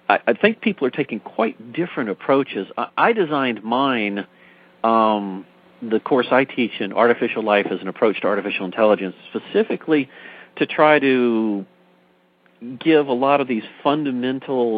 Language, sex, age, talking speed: English, male, 50-69, 140 wpm